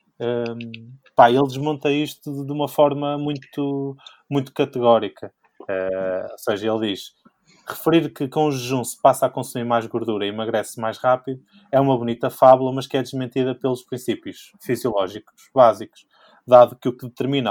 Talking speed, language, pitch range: 165 wpm, Portuguese, 115-135 Hz